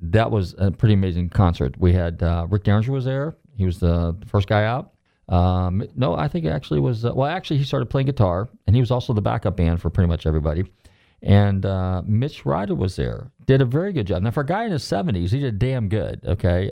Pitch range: 90-115 Hz